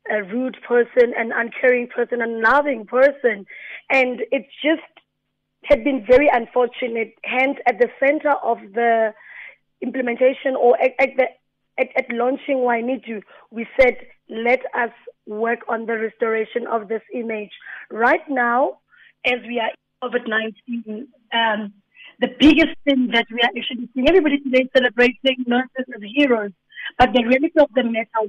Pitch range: 235-275 Hz